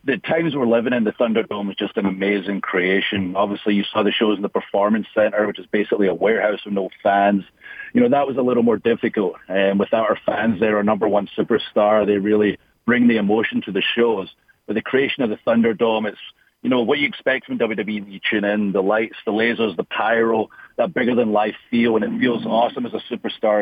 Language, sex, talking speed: English, male, 220 wpm